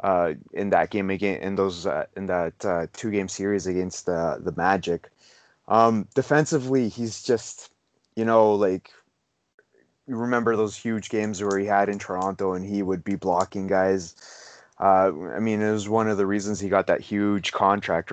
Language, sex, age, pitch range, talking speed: English, male, 20-39, 95-120 Hz, 180 wpm